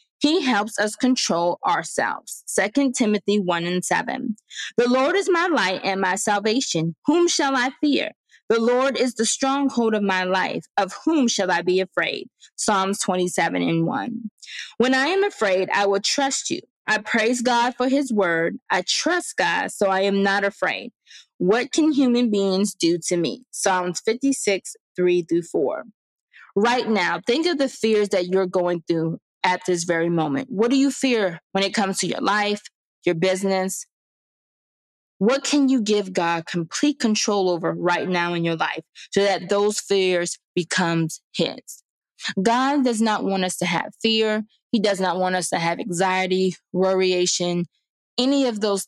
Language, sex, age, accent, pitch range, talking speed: English, female, 20-39, American, 185-255 Hz, 170 wpm